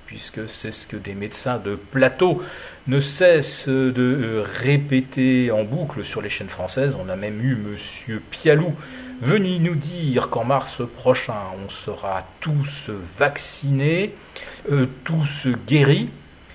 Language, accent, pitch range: French, French, 100-140 Hz